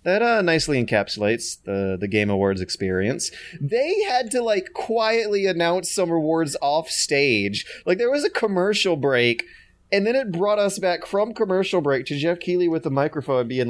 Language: English